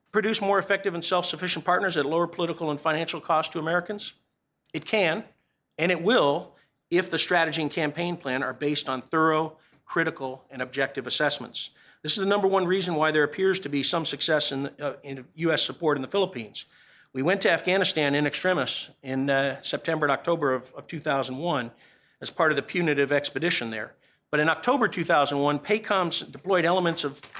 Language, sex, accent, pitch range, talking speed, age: English, male, American, 140-175 Hz, 180 wpm, 50-69